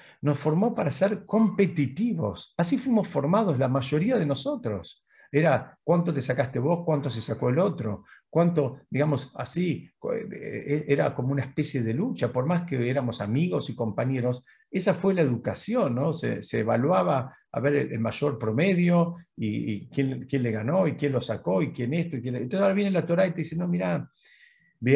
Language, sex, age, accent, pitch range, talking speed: Spanish, male, 50-69, Argentinian, 125-170 Hz, 190 wpm